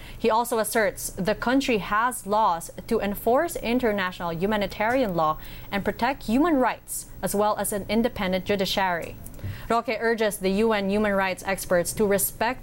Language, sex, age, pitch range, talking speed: English, female, 20-39, 185-230 Hz, 145 wpm